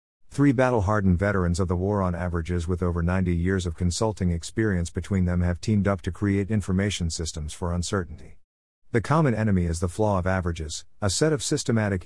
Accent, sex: American, male